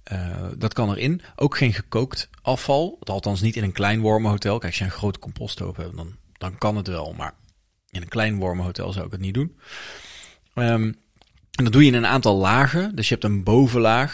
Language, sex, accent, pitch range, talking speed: Dutch, male, Dutch, 90-115 Hz, 215 wpm